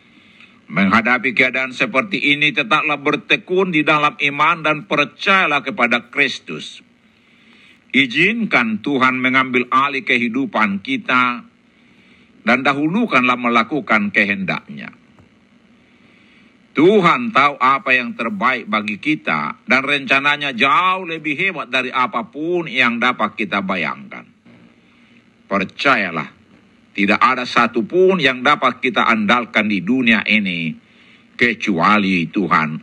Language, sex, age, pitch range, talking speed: Indonesian, male, 60-79, 125-200 Hz, 100 wpm